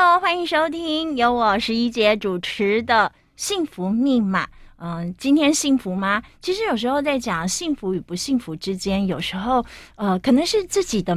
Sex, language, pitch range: female, Chinese, 185-255 Hz